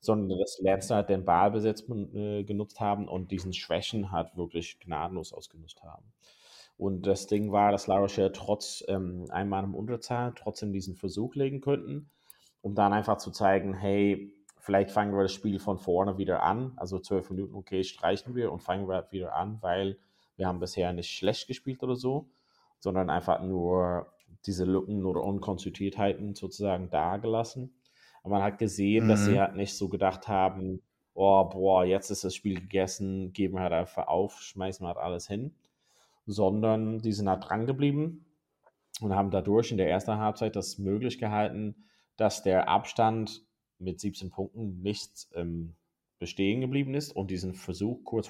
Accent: German